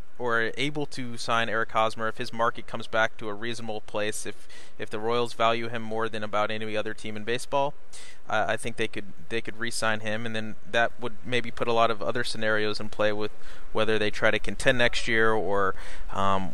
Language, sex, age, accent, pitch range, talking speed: English, male, 20-39, American, 105-130 Hz, 220 wpm